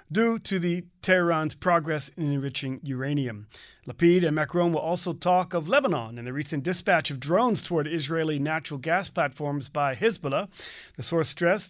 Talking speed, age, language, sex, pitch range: 165 wpm, 30-49, English, male, 145-190 Hz